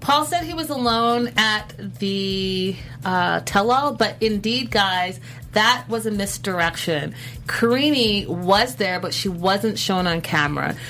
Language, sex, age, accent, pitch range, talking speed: English, female, 30-49, American, 155-195 Hz, 140 wpm